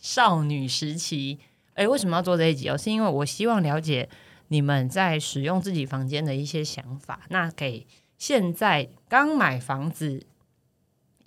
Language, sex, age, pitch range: Chinese, female, 20-39, 140-185 Hz